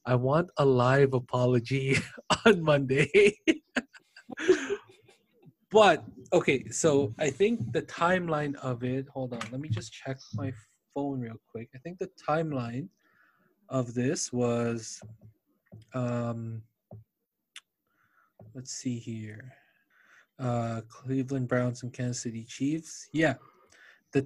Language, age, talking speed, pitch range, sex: English, 20-39, 115 wpm, 125-160 Hz, male